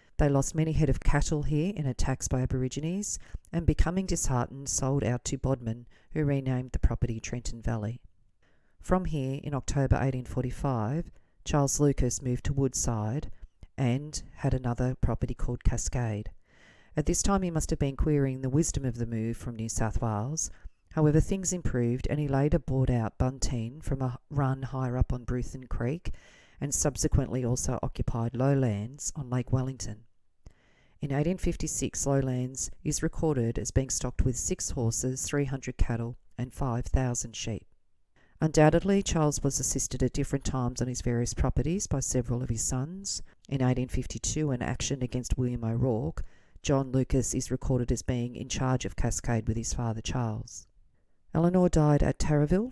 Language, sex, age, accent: English, female, 40-59, Australian